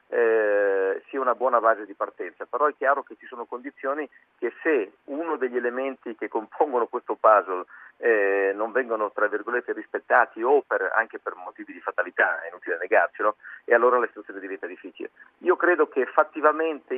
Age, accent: 50-69, native